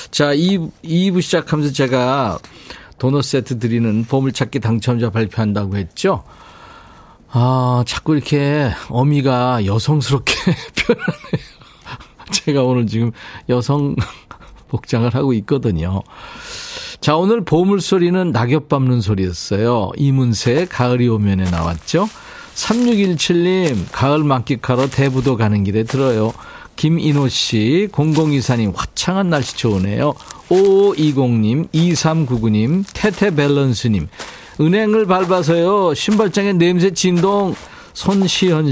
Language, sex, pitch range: Korean, male, 120-165 Hz